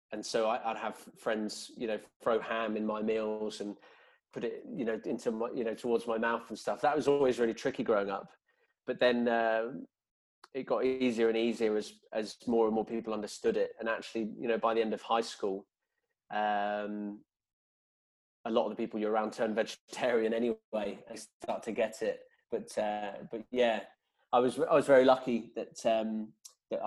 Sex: male